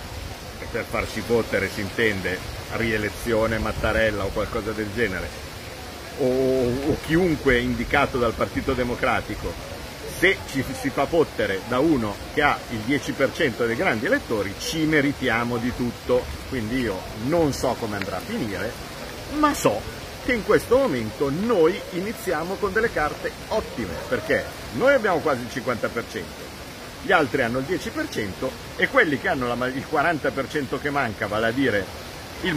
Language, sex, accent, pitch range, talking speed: Italian, male, native, 115-150 Hz, 145 wpm